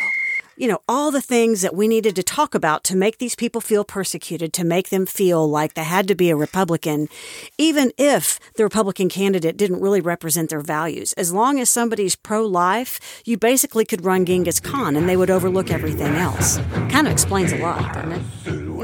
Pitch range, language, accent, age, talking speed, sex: 170-235 Hz, English, American, 50-69, 200 wpm, female